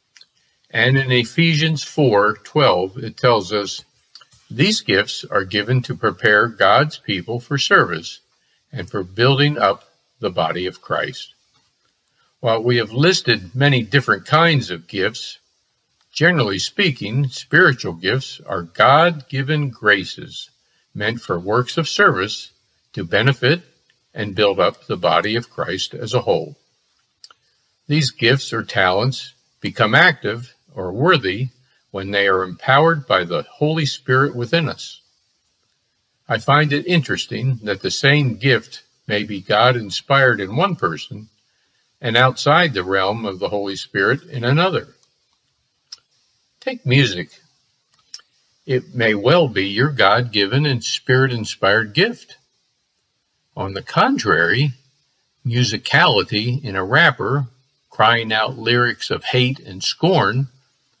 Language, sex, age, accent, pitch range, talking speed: English, male, 50-69, American, 105-140 Hz, 125 wpm